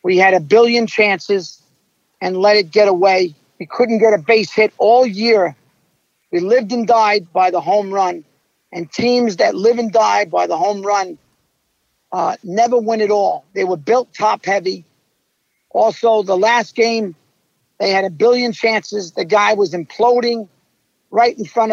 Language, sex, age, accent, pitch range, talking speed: English, male, 50-69, American, 200-240 Hz, 170 wpm